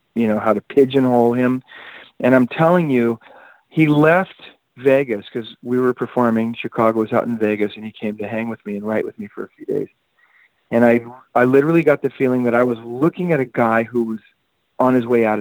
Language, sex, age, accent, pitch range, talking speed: English, male, 40-59, American, 115-130 Hz, 220 wpm